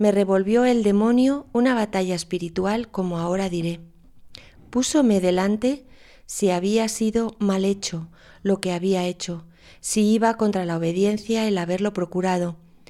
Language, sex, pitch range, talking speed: Spanish, female, 185-225 Hz, 135 wpm